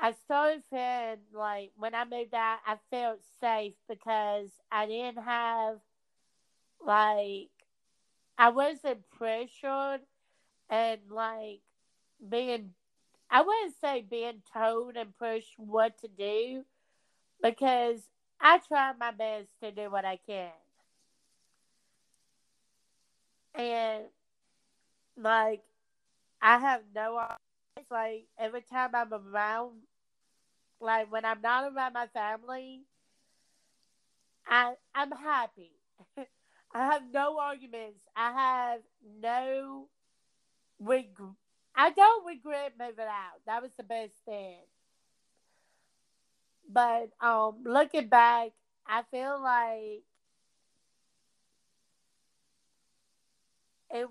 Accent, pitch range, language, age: American, 220-255 Hz, English, 40-59